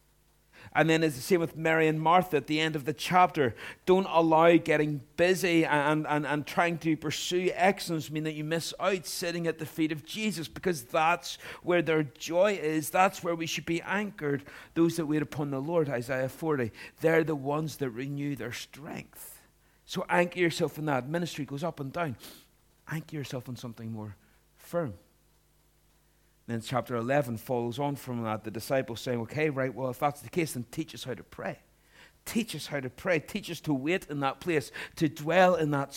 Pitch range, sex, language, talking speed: 135-165 Hz, male, English, 200 wpm